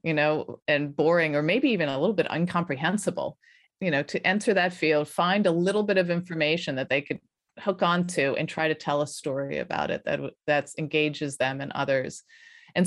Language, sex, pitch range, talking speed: English, female, 145-180 Hz, 195 wpm